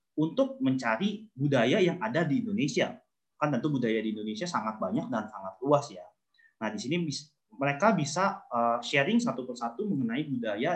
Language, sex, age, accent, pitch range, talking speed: English, male, 30-49, Indonesian, 125-180 Hz, 160 wpm